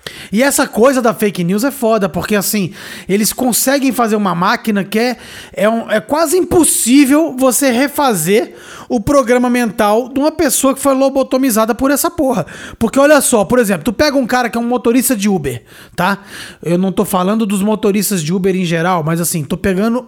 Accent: Brazilian